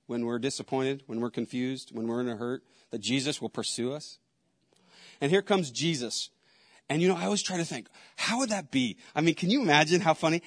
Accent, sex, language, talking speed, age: American, male, English, 225 wpm, 40-59